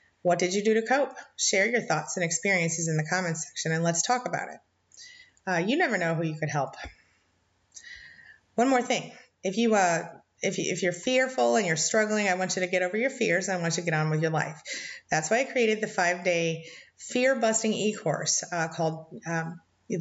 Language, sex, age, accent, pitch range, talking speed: English, female, 30-49, American, 165-225 Hz, 215 wpm